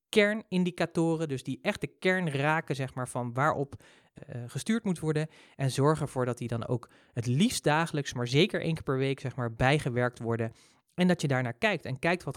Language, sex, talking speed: Dutch, male, 210 wpm